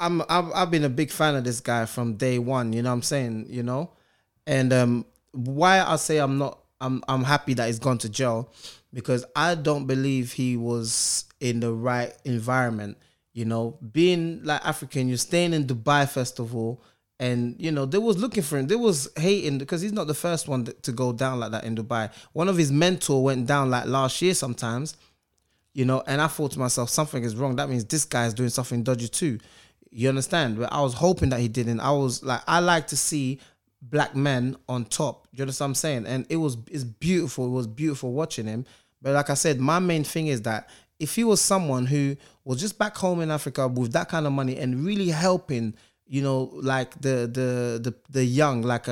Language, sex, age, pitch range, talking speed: English, male, 20-39, 120-150 Hz, 220 wpm